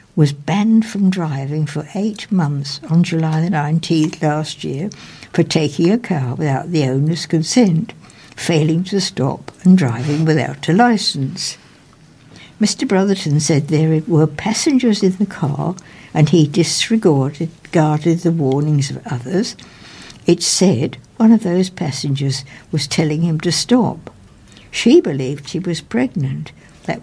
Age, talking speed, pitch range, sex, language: 60-79, 135 wpm, 150-195 Hz, female, English